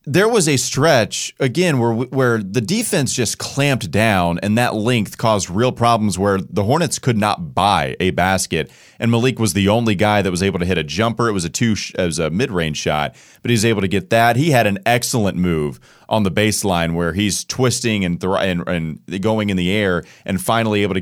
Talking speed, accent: 225 wpm, American